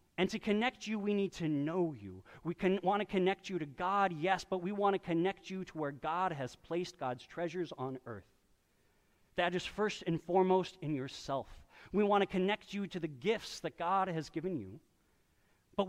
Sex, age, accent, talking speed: male, 40-59, American, 205 wpm